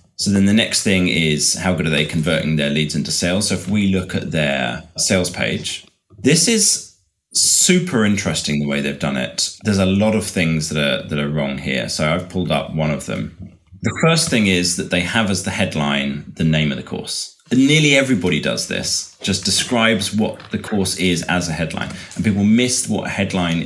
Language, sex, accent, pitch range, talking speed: English, male, British, 80-105 Hz, 215 wpm